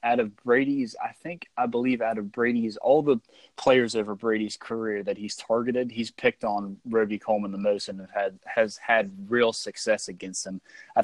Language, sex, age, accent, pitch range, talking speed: English, male, 20-39, American, 95-115 Hz, 195 wpm